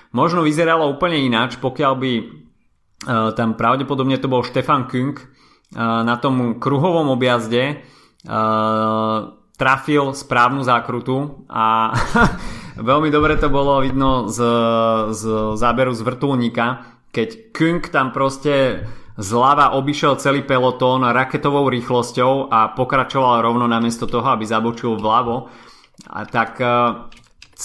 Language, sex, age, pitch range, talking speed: Slovak, male, 30-49, 115-135 Hz, 115 wpm